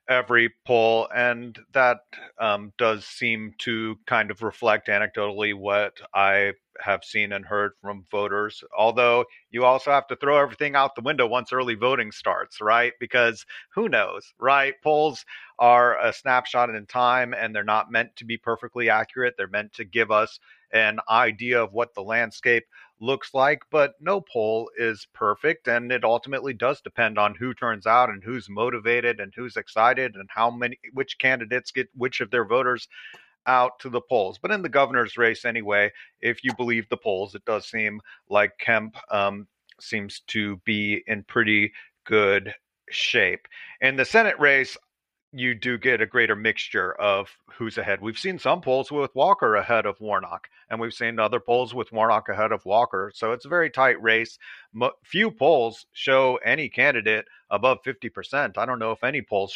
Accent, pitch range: American, 110-130 Hz